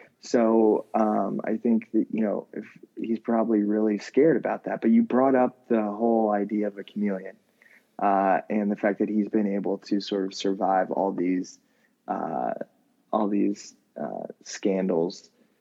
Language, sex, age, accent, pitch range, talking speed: English, male, 20-39, American, 100-115 Hz, 165 wpm